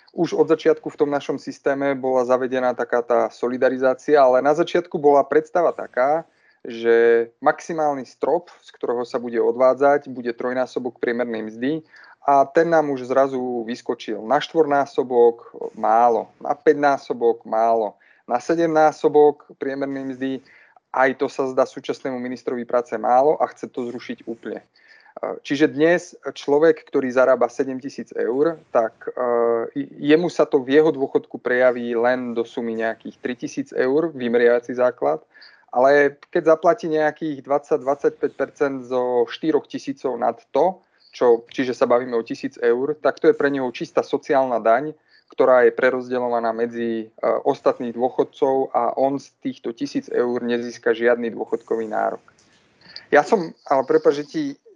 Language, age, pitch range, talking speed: Slovak, 30-49, 120-155 Hz, 140 wpm